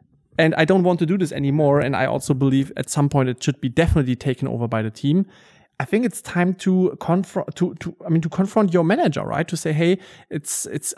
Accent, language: German, English